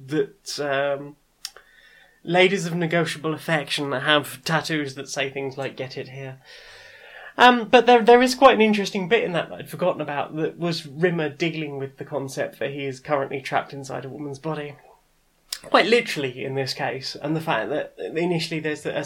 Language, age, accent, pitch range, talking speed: English, 20-39, British, 140-170 Hz, 185 wpm